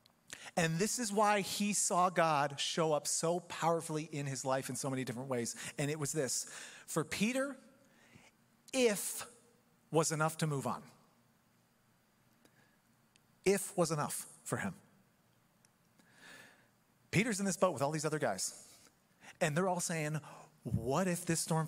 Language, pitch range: English, 145-200 Hz